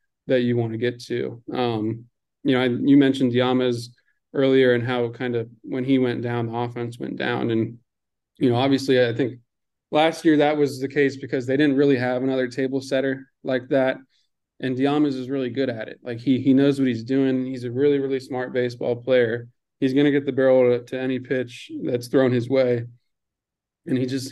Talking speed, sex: 210 wpm, male